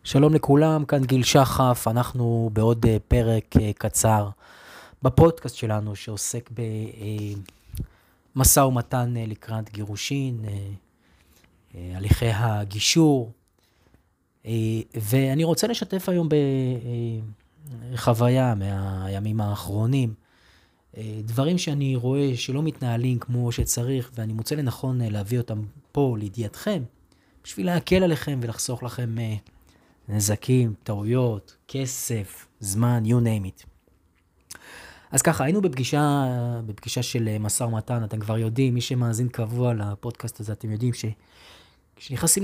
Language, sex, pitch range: Hebrew, male, 105-140 Hz